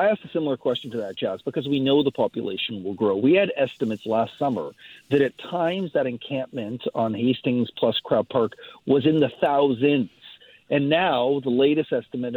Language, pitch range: English, 125-155 Hz